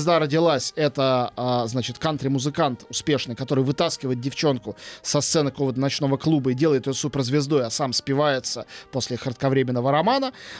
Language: Russian